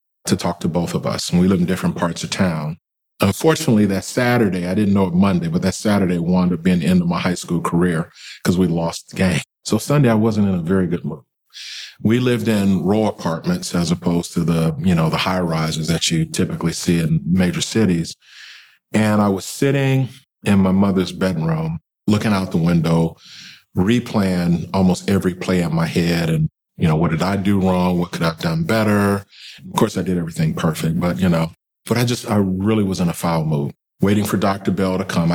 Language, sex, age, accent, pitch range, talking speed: English, male, 40-59, American, 85-100 Hz, 215 wpm